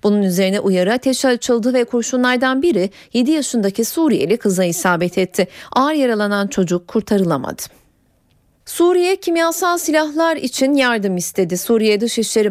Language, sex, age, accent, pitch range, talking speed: Turkish, female, 40-59, native, 195-255 Hz, 125 wpm